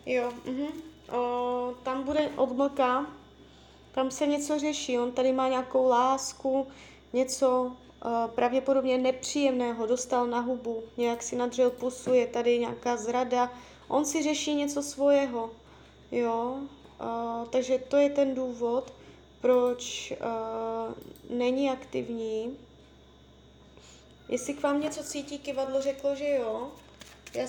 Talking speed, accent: 110 wpm, native